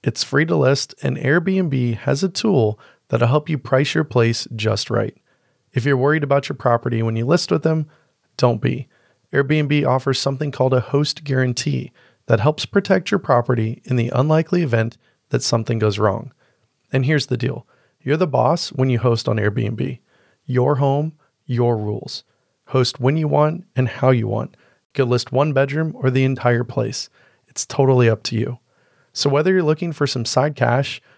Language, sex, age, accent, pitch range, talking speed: English, male, 30-49, American, 115-145 Hz, 185 wpm